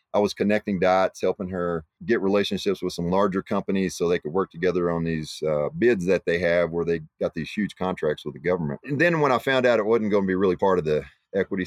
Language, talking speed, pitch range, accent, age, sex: English, 250 wpm, 85-100 Hz, American, 30-49, male